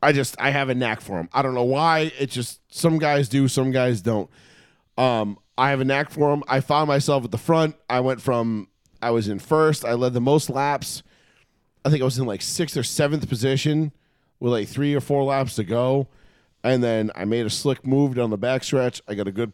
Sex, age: male, 30-49